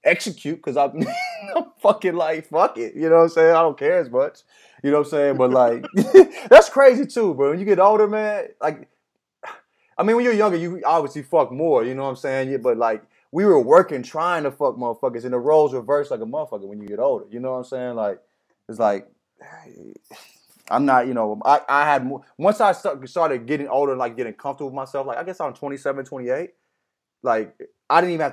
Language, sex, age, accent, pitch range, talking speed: English, male, 20-39, American, 125-165 Hz, 220 wpm